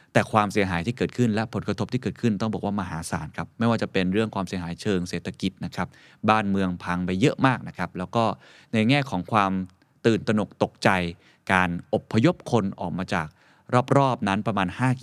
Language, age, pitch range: Thai, 20-39, 90-120 Hz